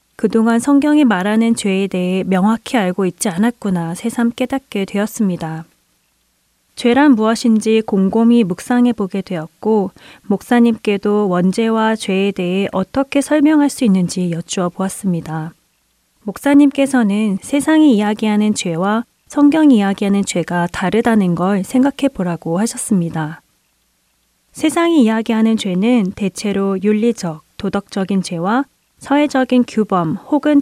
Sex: female